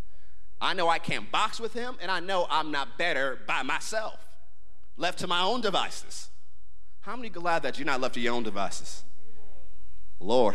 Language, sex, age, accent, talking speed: English, male, 30-49, American, 180 wpm